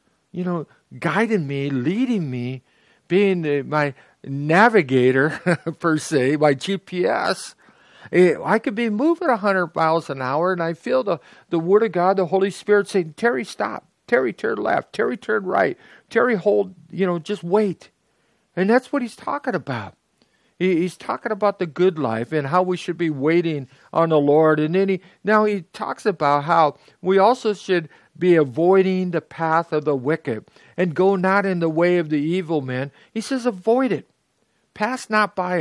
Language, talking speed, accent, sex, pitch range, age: English, 170 wpm, American, male, 150-200 Hz, 50-69